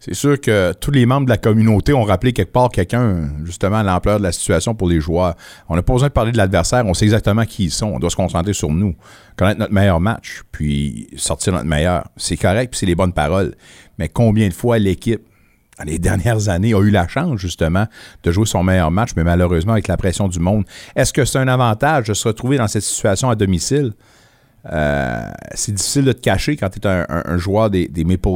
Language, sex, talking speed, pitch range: French, male, 240 wpm, 90-115 Hz